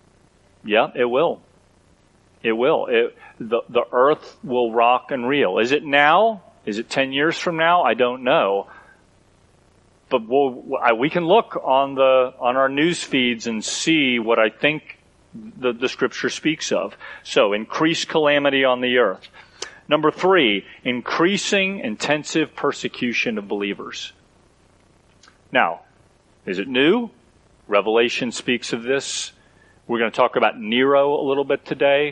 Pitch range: 110-150 Hz